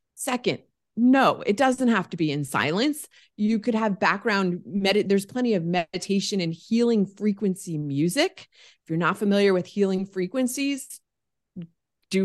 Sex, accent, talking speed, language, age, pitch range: female, American, 140 wpm, English, 30-49, 170-230 Hz